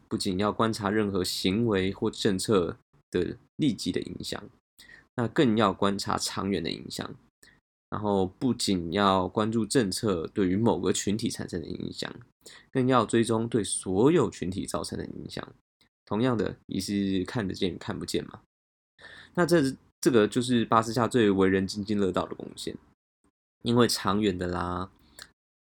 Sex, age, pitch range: male, 20-39, 95-110 Hz